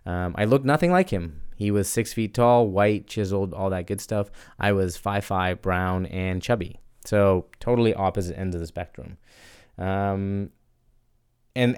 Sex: male